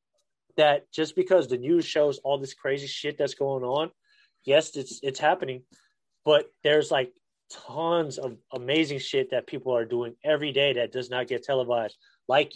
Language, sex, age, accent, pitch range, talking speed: English, male, 20-39, American, 130-155 Hz, 170 wpm